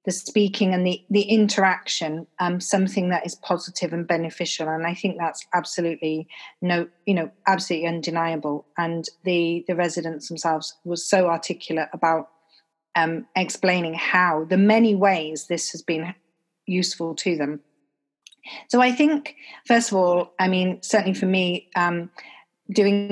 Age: 40-59